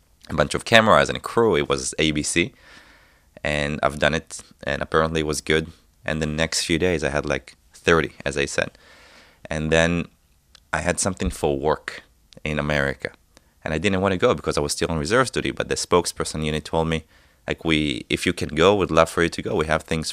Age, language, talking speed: 20-39, Hebrew, 220 wpm